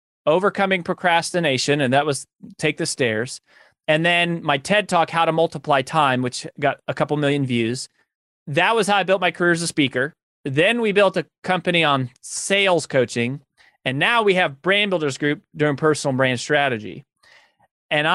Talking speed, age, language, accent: 175 wpm, 30-49, English, American